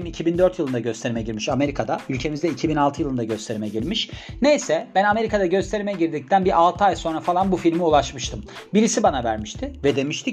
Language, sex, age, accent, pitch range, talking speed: Turkish, male, 40-59, native, 130-185 Hz, 165 wpm